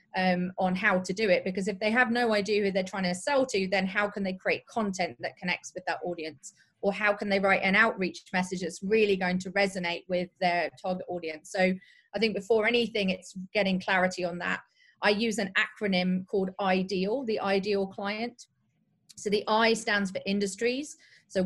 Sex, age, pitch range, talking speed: female, 30-49, 185-220 Hz, 200 wpm